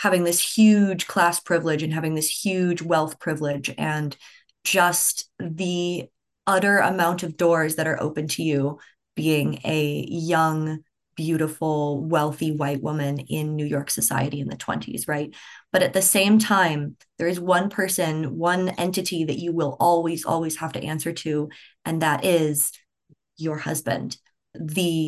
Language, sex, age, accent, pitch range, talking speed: English, female, 20-39, American, 155-200 Hz, 155 wpm